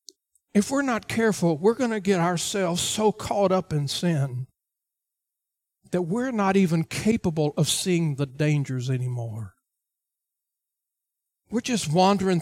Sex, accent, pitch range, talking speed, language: male, American, 145-195 Hz, 130 wpm, English